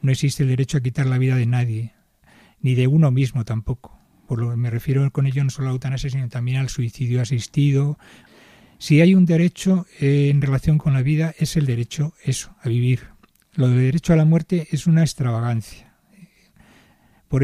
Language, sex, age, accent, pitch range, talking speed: Spanish, male, 40-59, Spanish, 125-150 Hz, 195 wpm